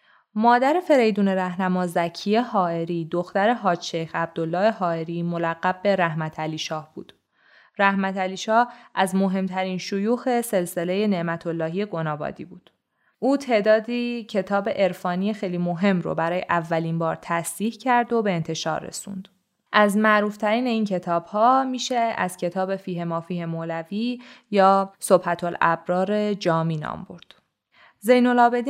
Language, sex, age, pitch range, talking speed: Persian, female, 20-39, 170-215 Hz, 125 wpm